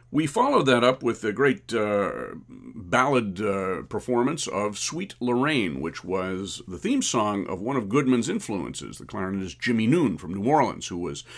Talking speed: 175 wpm